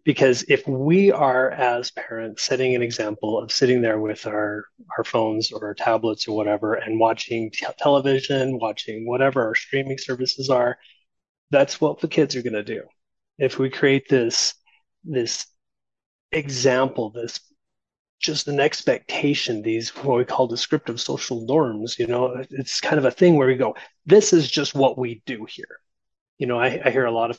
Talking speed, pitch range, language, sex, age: 175 wpm, 120-150 Hz, English, male, 30-49